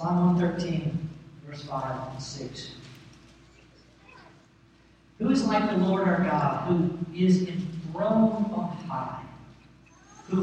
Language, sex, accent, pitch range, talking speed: English, male, American, 160-190 Hz, 110 wpm